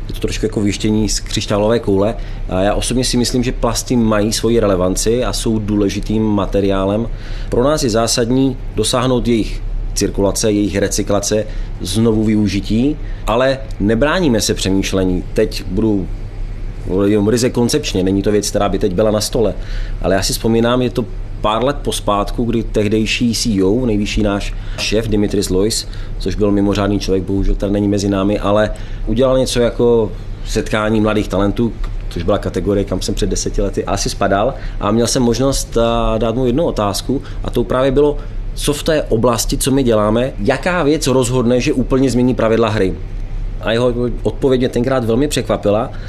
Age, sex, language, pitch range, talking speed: 30-49, male, Czech, 100-120 Hz, 165 wpm